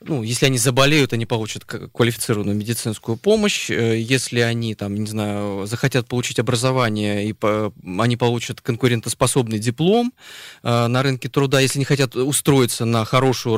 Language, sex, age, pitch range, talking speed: Russian, male, 20-39, 110-135 Hz, 135 wpm